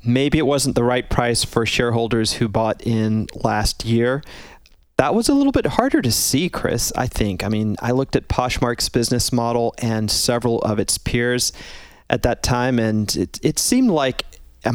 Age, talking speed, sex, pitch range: 30-49, 185 wpm, male, 110-130 Hz